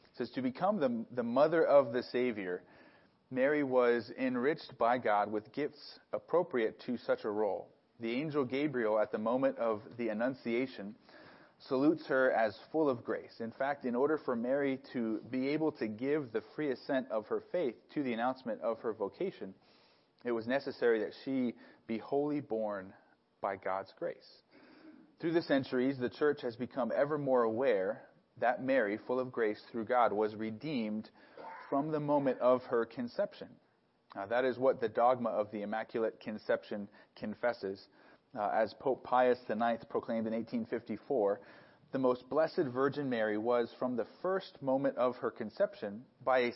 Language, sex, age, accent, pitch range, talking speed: English, male, 30-49, American, 115-155 Hz, 165 wpm